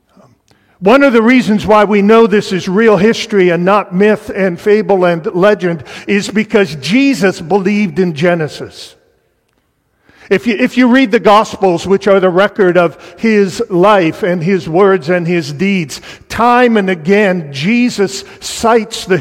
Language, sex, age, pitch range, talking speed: English, male, 50-69, 190-230 Hz, 155 wpm